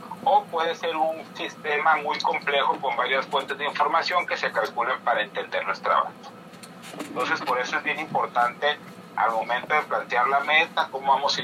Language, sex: Spanish, male